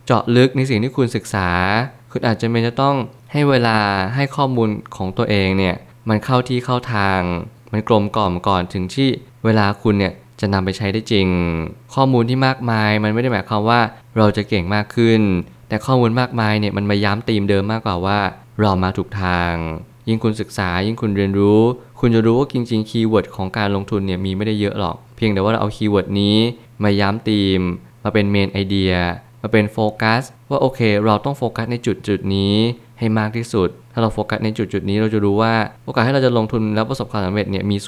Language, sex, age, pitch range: Thai, male, 20-39, 100-120 Hz